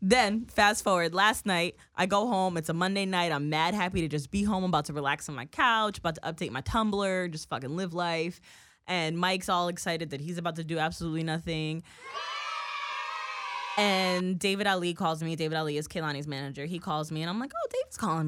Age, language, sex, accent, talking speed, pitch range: 20-39, English, female, American, 215 wpm, 155-235 Hz